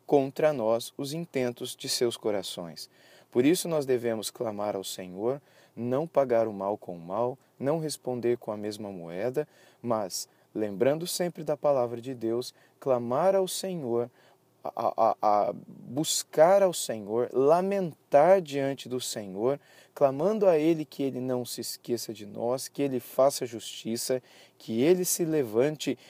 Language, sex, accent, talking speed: Portuguese, male, Brazilian, 150 wpm